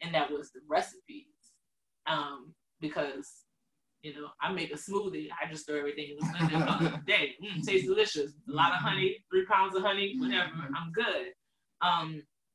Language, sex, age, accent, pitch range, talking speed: English, female, 20-39, American, 155-255 Hz, 170 wpm